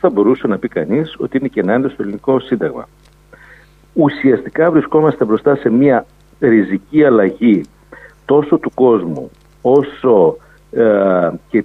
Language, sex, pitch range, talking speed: Greek, male, 110-160 Hz, 130 wpm